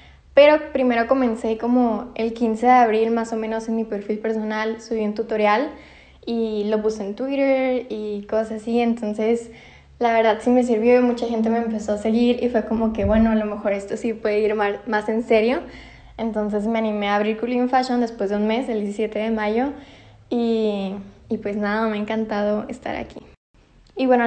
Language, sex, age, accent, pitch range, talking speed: Spanish, female, 10-29, Mexican, 220-245 Hz, 195 wpm